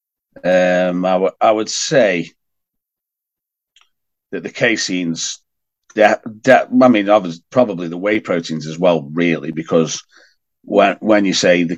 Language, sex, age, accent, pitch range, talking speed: English, male, 40-59, British, 85-125 Hz, 140 wpm